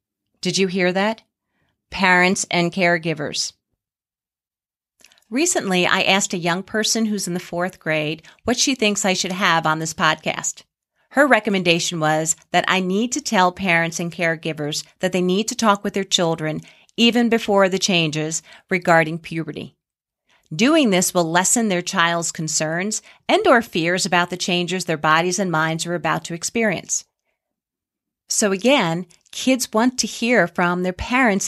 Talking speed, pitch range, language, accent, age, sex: 155 wpm, 170-225 Hz, English, American, 40-59, female